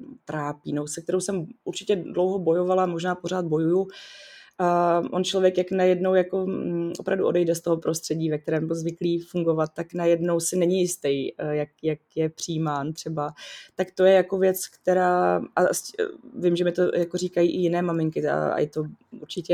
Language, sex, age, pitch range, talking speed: Czech, female, 20-39, 170-190 Hz, 180 wpm